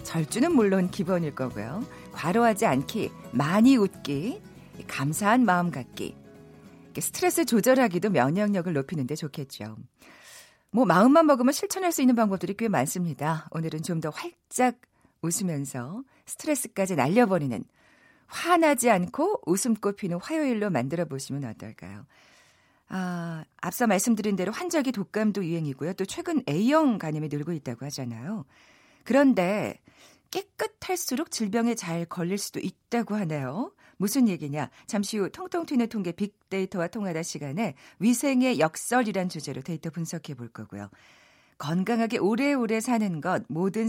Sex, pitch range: female, 155-240 Hz